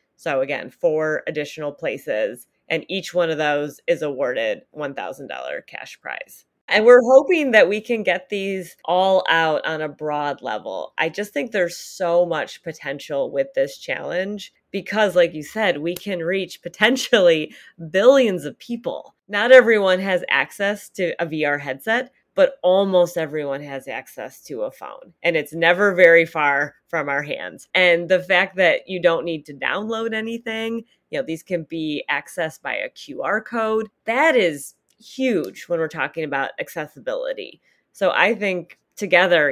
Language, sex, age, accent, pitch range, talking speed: English, female, 30-49, American, 155-215 Hz, 160 wpm